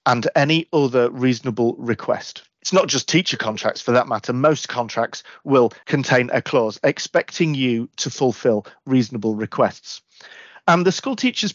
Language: English